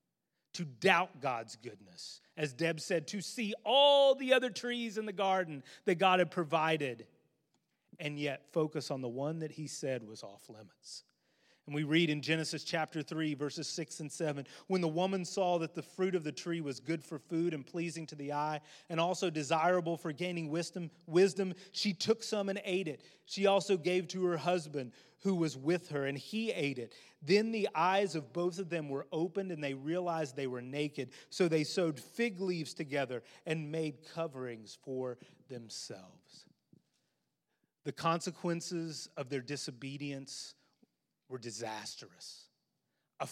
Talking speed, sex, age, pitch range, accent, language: 170 wpm, male, 30-49, 145-190 Hz, American, English